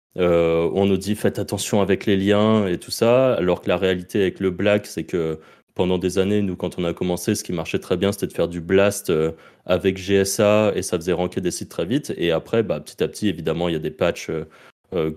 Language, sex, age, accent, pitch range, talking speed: French, male, 30-49, French, 90-115 Hz, 245 wpm